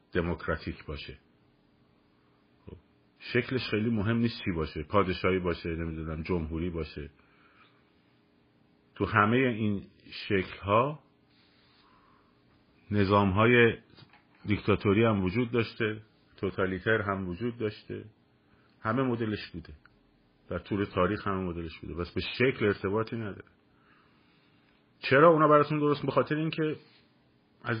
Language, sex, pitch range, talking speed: Persian, male, 95-120 Hz, 105 wpm